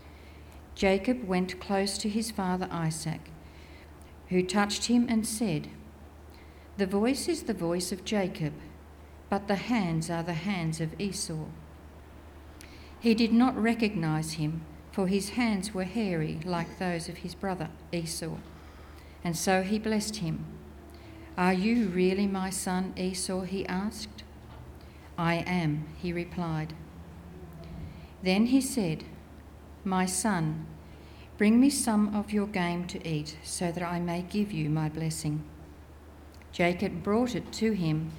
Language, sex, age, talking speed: English, female, 50-69, 135 wpm